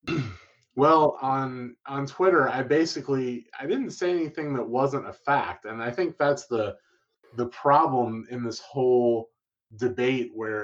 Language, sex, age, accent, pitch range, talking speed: English, male, 20-39, American, 115-135 Hz, 145 wpm